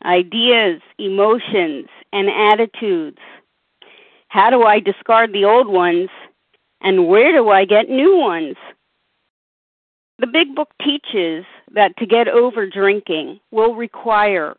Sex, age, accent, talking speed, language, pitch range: female, 50-69, American, 120 wpm, English, 190-245 Hz